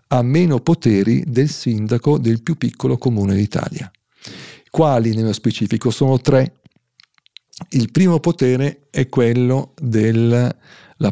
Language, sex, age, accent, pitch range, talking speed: Italian, male, 50-69, native, 115-155 Hz, 115 wpm